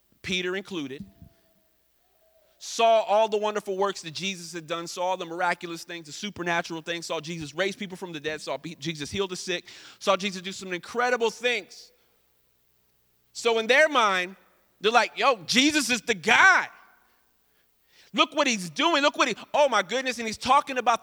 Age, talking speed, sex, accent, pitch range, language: 30-49, 175 wpm, male, American, 175-265 Hz, English